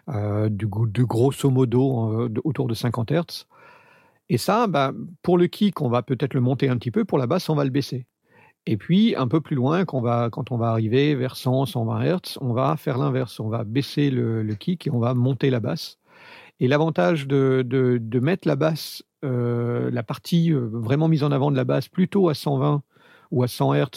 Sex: male